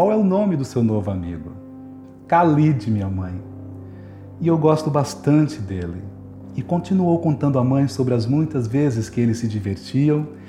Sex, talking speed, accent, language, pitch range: male, 165 wpm, Brazilian, Portuguese, 95-145 Hz